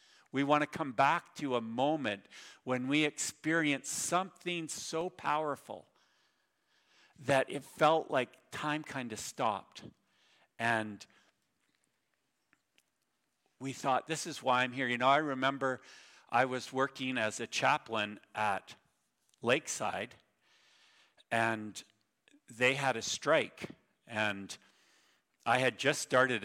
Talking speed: 120 wpm